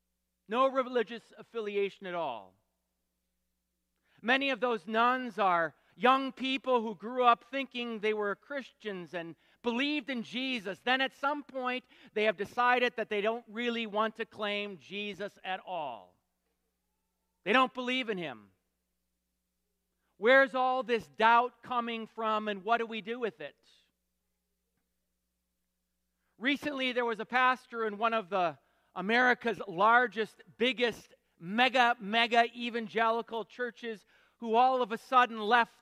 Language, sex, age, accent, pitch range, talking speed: English, male, 40-59, American, 165-240 Hz, 135 wpm